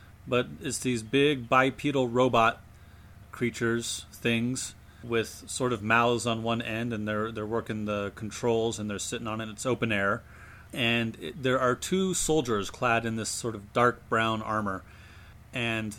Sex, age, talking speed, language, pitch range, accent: male, 30-49, 165 wpm, English, 100-120 Hz, American